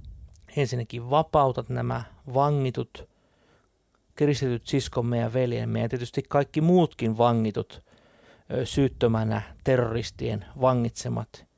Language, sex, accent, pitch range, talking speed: Finnish, male, native, 110-135 Hz, 85 wpm